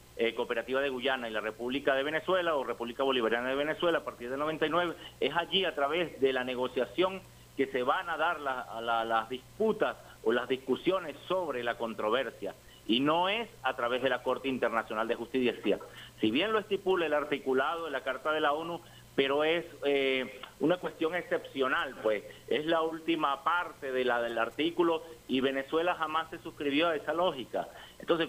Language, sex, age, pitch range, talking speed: Spanish, male, 50-69, 130-165 Hz, 175 wpm